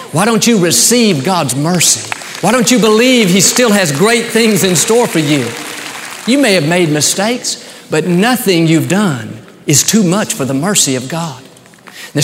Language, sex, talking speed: English, male, 180 wpm